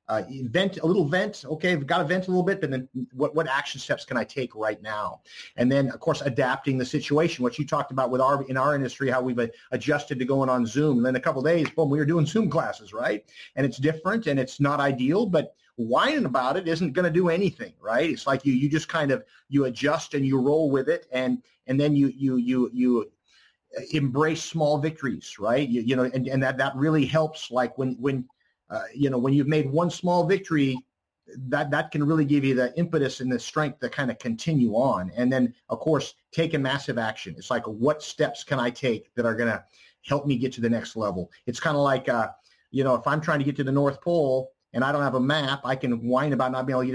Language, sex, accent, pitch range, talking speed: English, male, American, 125-155 Hz, 250 wpm